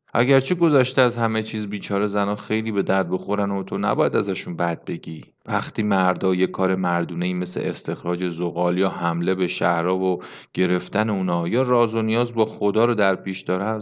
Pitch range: 100-135 Hz